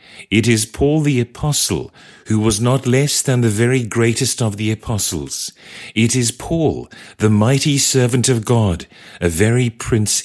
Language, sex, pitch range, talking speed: English, male, 95-130 Hz, 160 wpm